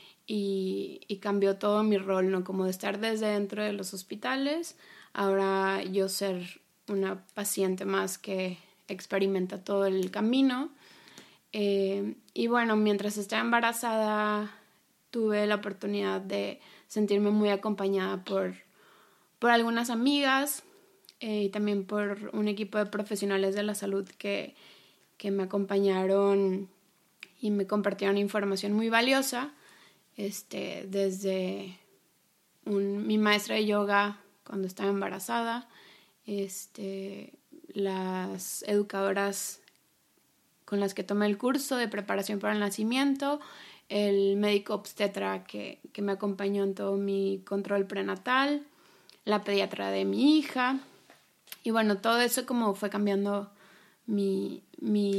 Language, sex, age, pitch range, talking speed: Spanish, female, 20-39, 195-220 Hz, 125 wpm